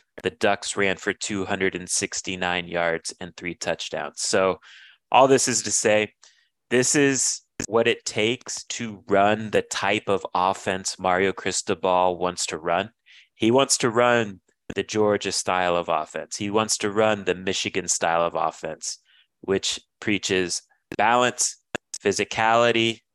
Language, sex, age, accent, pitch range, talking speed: English, male, 30-49, American, 90-110 Hz, 135 wpm